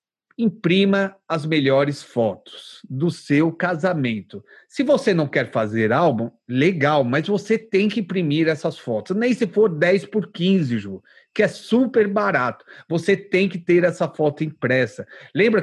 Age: 40-59